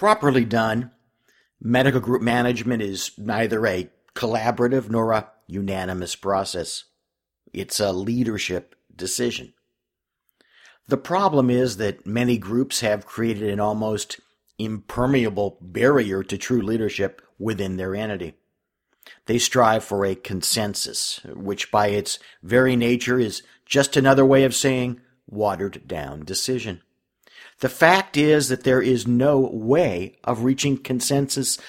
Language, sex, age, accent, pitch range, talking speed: English, male, 50-69, American, 105-130 Hz, 120 wpm